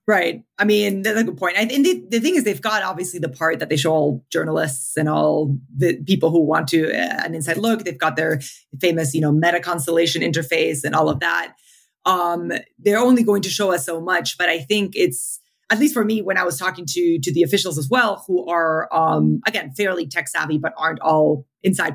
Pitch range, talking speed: 165-200 Hz, 225 wpm